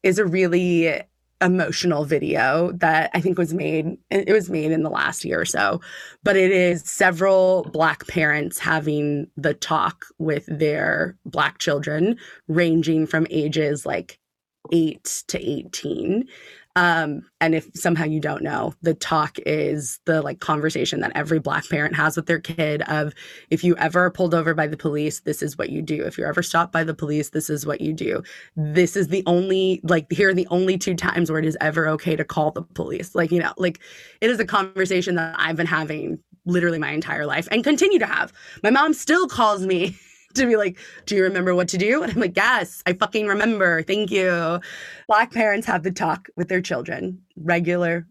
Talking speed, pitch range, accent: 195 wpm, 160-185 Hz, American